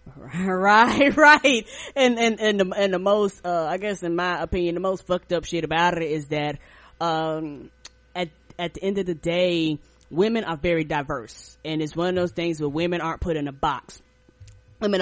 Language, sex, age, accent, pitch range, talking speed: English, female, 20-39, American, 160-190 Hz, 195 wpm